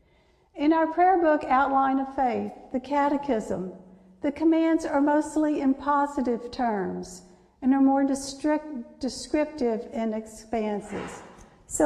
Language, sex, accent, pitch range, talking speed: English, female, American, 240-290 Hz, 115 wpm